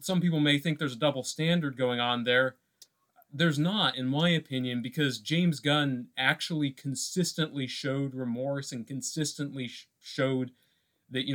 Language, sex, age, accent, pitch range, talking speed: English, male, 30-49, American, 125-155 Hz, 155 wpm